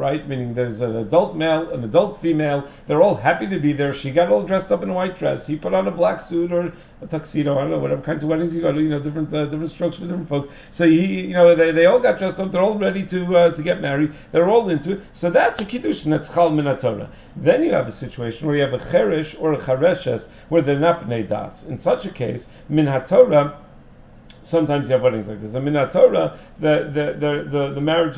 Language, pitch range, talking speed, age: English, 140-175 Hz, 245 wpm, 40-59